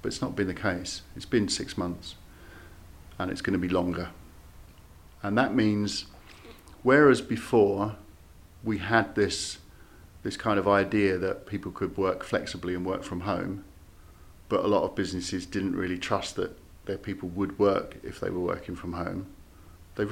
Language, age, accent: English, 50-69, British